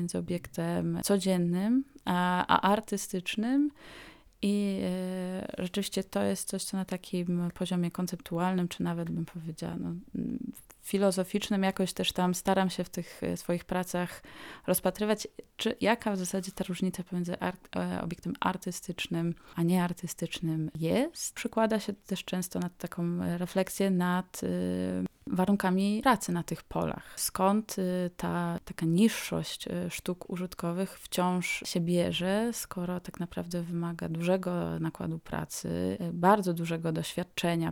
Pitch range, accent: 170-195 Hz, native